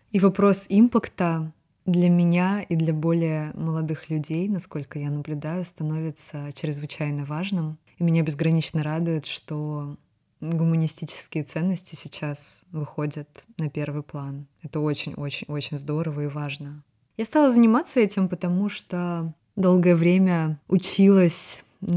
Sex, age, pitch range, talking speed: female, 20-39, 155-180 Hz, 115 wpm